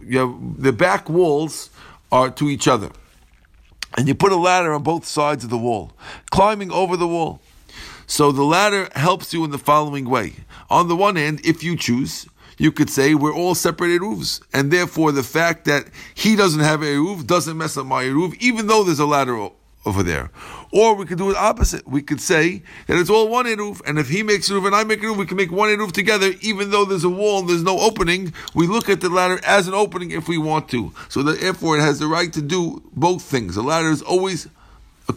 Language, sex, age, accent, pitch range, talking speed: English, male, 50-69, American, 140-185 Hz, 230 wpm